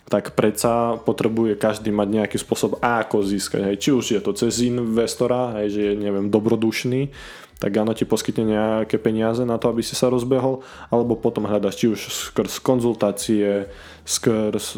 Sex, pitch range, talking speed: male, 100-115 Hz, 165 wpm